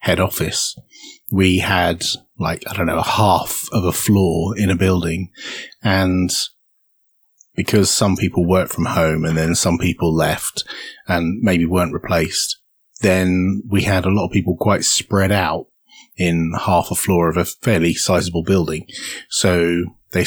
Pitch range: 85-105 Hz